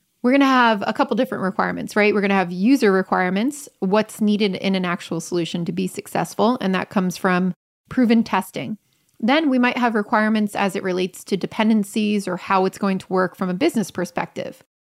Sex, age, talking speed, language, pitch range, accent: female, 30-49, 195 wpm, English, 190-235 Hz, American